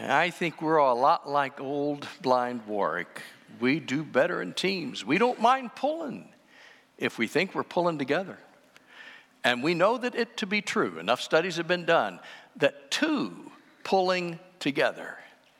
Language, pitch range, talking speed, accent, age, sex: English, 190-270 Hz, 160 wpm, American, 60-79, male